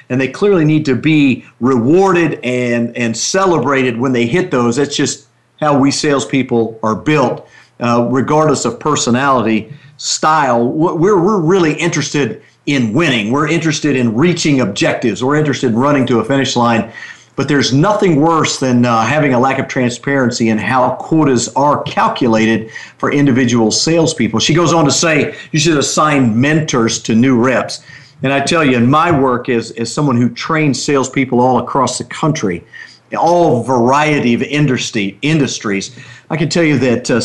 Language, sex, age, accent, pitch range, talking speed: English, male, 50-69, American, 120-155 Hz, 170 wpm